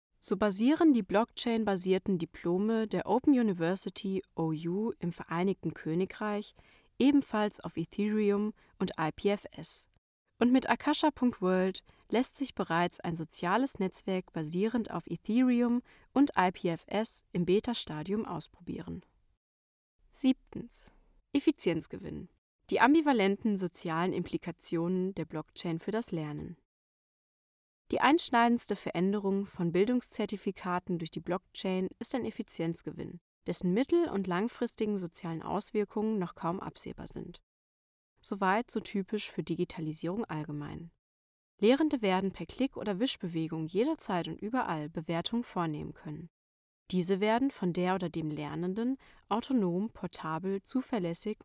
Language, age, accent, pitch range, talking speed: German, 20-39, German, 170-225 Hz, 110 wpm